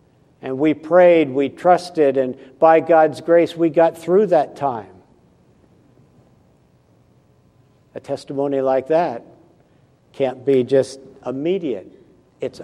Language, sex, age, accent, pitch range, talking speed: English, male, 60-79, American, 150-195 Hz, 110 wpm